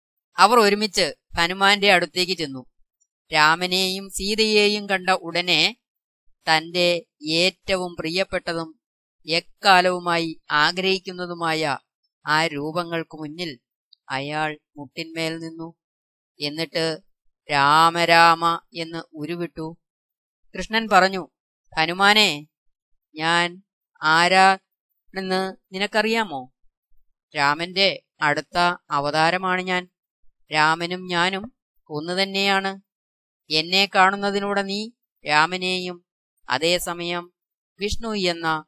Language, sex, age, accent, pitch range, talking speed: Malayalam, female, 20-39, native, 160-190 Hz, 75 wpm